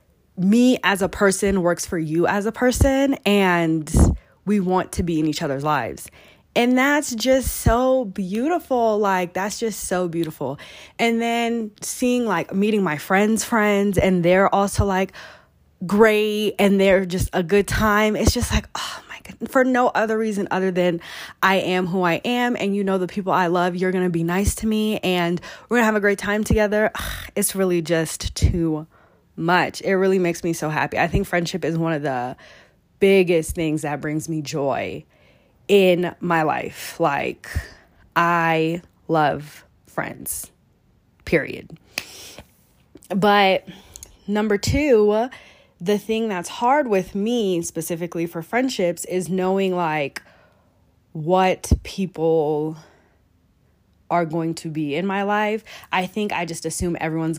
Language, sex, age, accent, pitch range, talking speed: English, female, 20-39, American, 165-210 Hz, 155 wpm